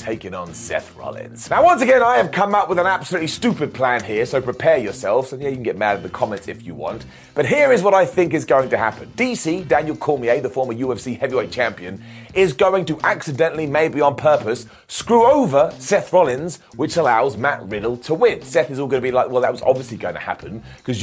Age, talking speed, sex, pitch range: 30-49, 235 wpm, male, 140-195 Hz